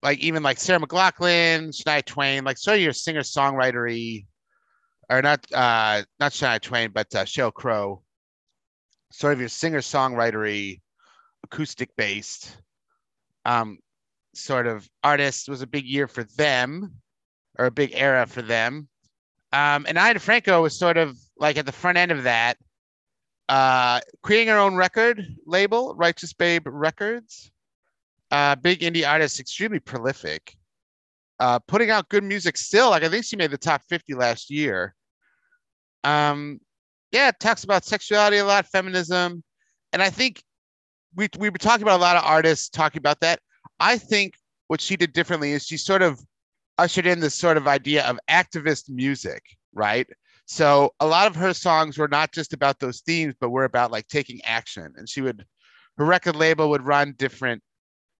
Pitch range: 130-180 Hz